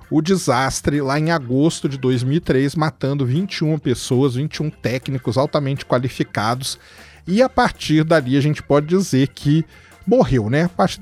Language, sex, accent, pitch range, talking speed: Portuguese, male, Brazilian, 130-185 Hz, 145 wpm